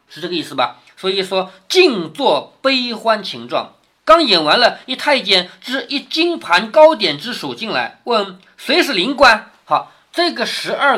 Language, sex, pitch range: Chinese, male, 190-290 Hz